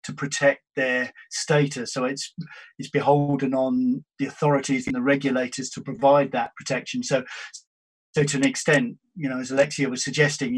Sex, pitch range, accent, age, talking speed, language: male, 130-160 Hz, British, 40-59, 165 wpm, English